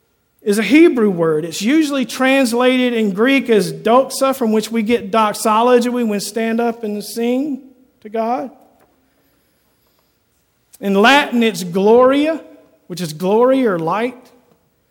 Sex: male